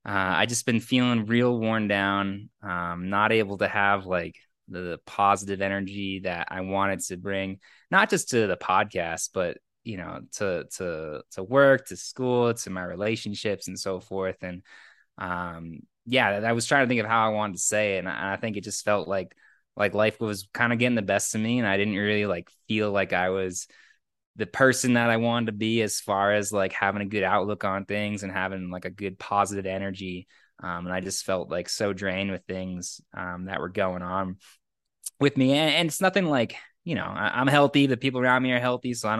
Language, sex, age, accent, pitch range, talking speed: English, male, 20-39, American, 95-110 Hz, 215 wpm